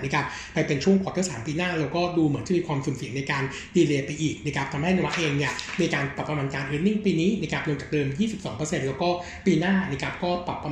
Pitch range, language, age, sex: 140-175 Hz, Thai, 60-79, male